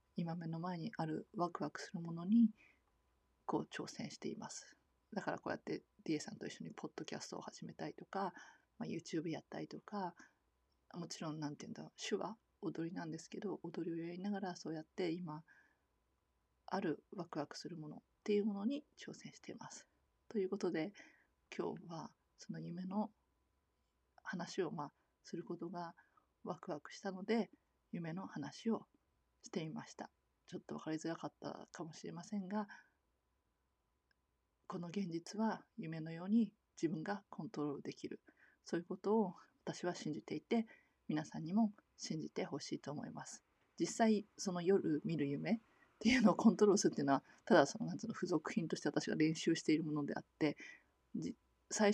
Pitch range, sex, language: 155-210 Hz, female, Japanese